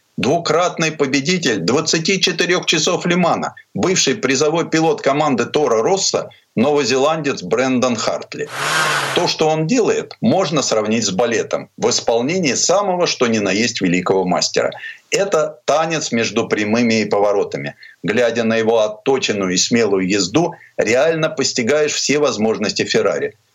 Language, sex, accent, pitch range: Russian, male, native, 125-210 Hz